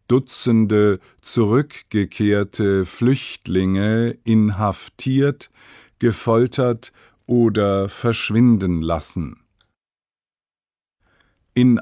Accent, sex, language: German, male, English